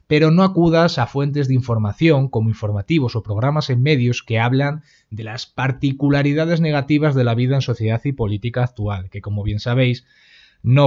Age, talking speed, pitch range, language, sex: 30-49, 175 wpm, 115-155 Hz, Spanish, male